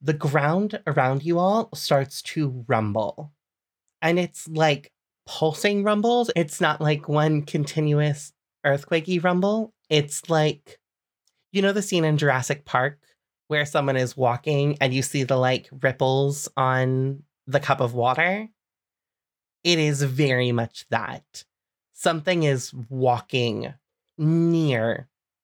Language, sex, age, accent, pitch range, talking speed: English, male, 30-49, American, 130-170 Hz, 125 wpm